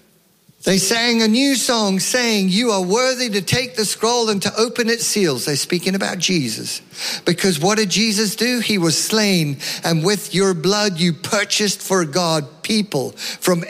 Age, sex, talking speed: 50-69, male, 175 wpm